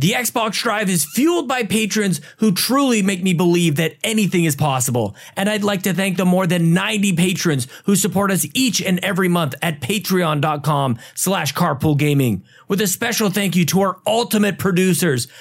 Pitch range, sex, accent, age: 160-210 Hz, male, American, 30-49